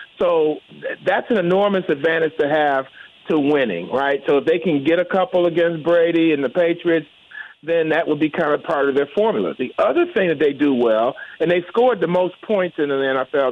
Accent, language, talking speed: American, English, 215 wpm